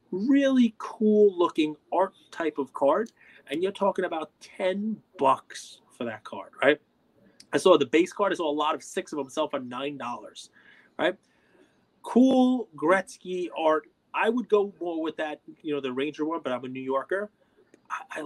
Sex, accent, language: male, American, English